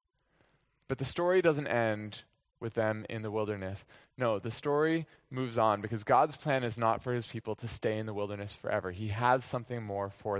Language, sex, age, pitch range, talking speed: English, male, 20-39, 115-150 Hz, 195 wpm